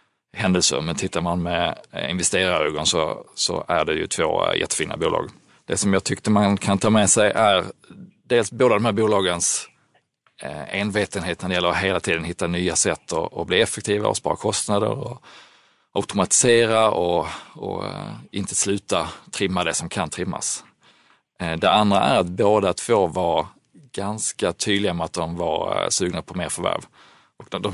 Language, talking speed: Swedish, 160 wpm